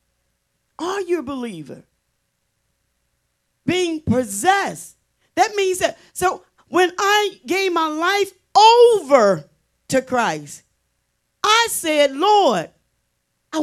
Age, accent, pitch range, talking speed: 40-59, American, 200-325 Hz, 95 wpm